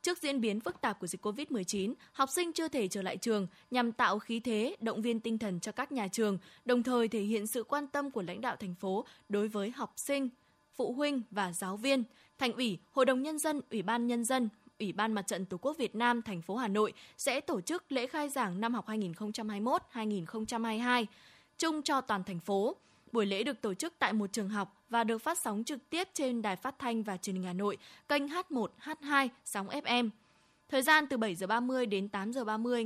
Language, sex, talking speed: Vietnamese, female, 225 wpm